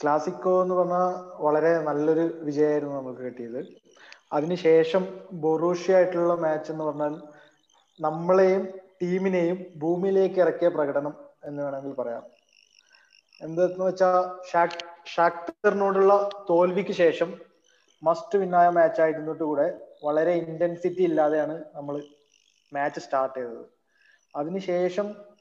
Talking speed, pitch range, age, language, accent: 95 wpm, 160-185 Hz, 20-39, Malayalam, native